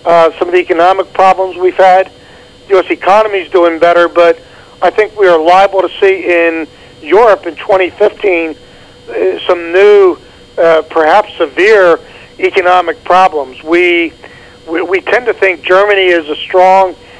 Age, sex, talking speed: 50-69, male, 150 wpm